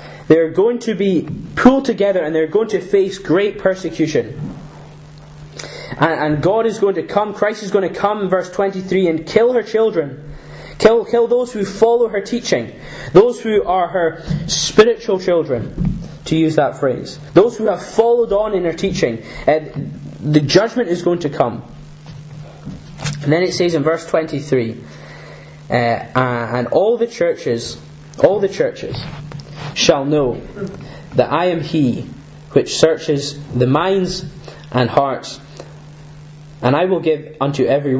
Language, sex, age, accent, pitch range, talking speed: English, male, 10-29, British, 145-190 Hz, 150 wpm